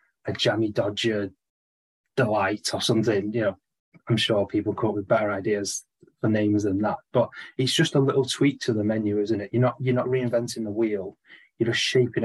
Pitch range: 105-125 Hz